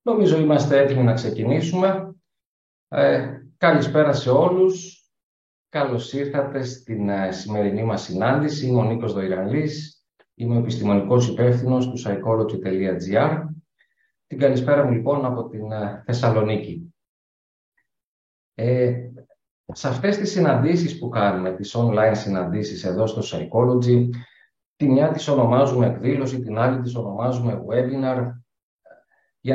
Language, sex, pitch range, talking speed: Greek, male, 110-145 Hz, 110 wpm